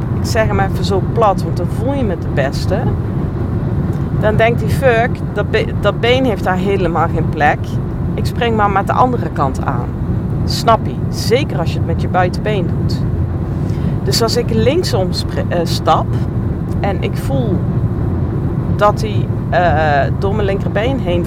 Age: 40-59